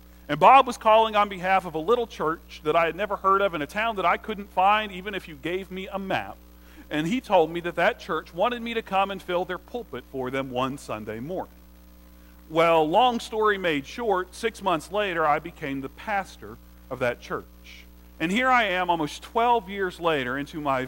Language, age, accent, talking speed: English, 40-59, American, 215 wpm